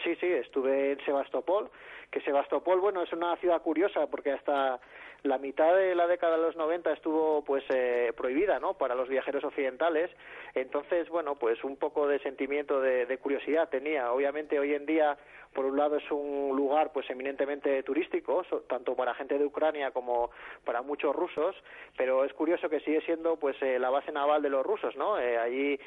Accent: Spanish